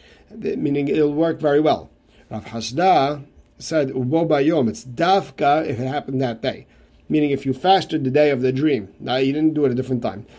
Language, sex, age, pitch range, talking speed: English, male, 50-69, 120-155 Hz, 190 wpm